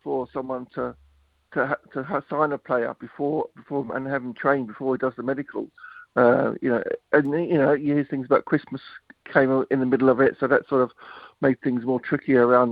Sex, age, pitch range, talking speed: male, 50-69, 120-140 Hz, 220 wpm